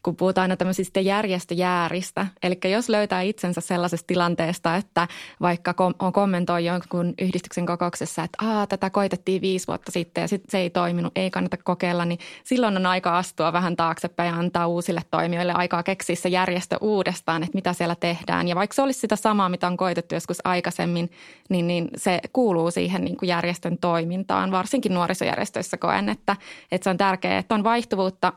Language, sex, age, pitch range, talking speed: Finnish, female, 20-39, 175-195 Hz, 175 wpm